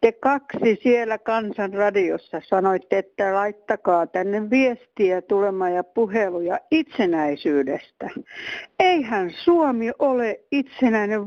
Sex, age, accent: female, 60-79, native